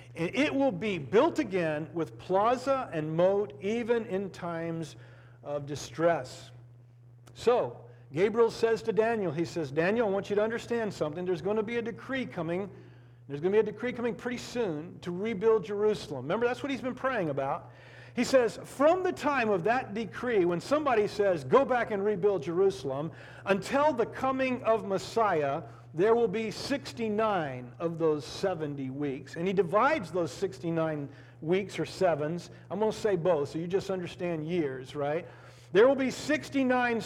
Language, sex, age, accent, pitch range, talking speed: English, male, 50-69, American, 155-235 Hz, 170 wpm